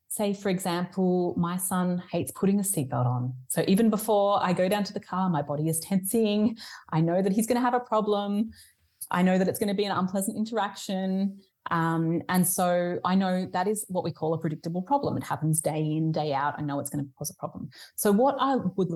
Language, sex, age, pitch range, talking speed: English, female, 30-49, 170-225 Hz, 230 wpm